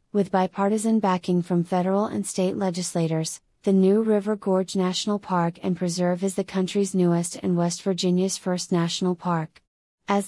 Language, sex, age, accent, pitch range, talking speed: English, female, 30-49, American, 180-200 Hz, 160 wpm